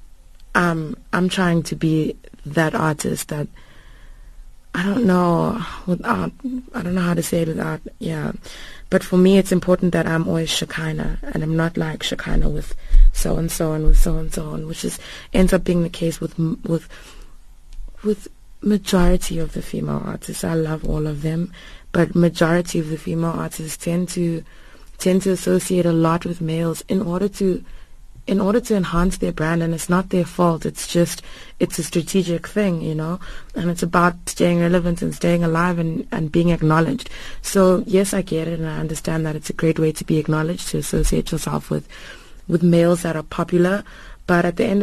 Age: 20-39